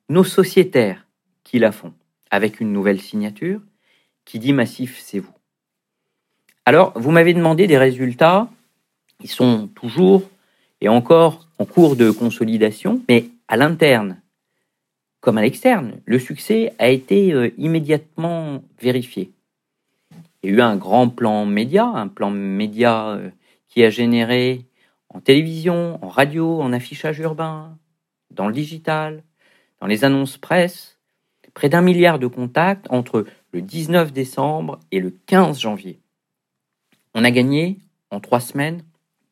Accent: French